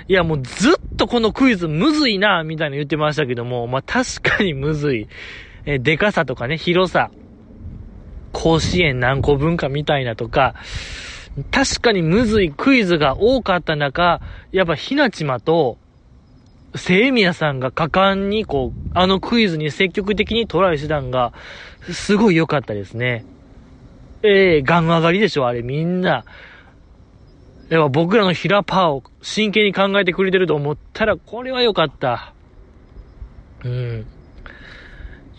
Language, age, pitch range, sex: Japanese, 20-39, 130-205 Hz, male